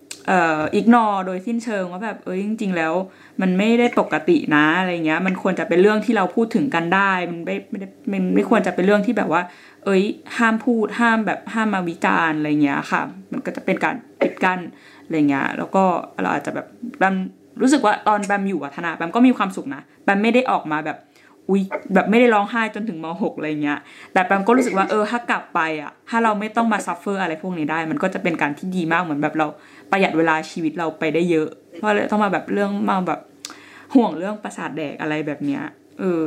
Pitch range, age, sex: 170-220 Hz, 20-39, female